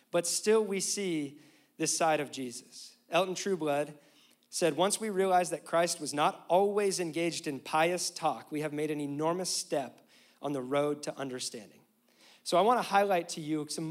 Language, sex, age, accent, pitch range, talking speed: English, male, 40-59, American, 150-200 Hz, 180 wpm